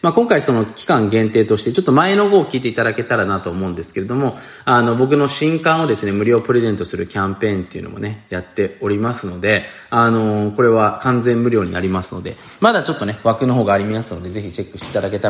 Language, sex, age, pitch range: Japanese, male, 20-39, 100-135 Hz